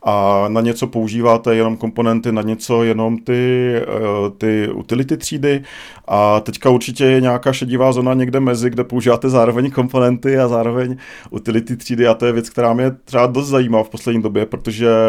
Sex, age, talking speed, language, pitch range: male, 40-59, 170 wpm, Czech, 110-130 Hz